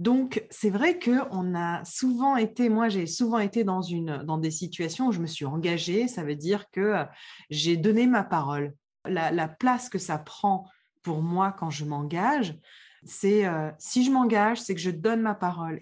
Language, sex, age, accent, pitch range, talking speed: French, female, 20-39, French, 170-225 Hz, 195 wpm